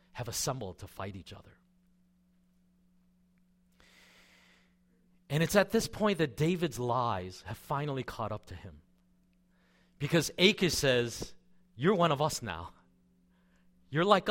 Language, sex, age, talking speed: English, male, 40-59, 125 wpm